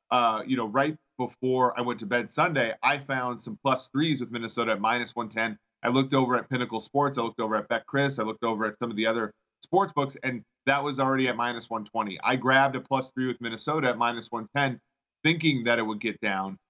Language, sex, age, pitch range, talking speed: English, male, 30-49, 115-135 Hz, 235 wpm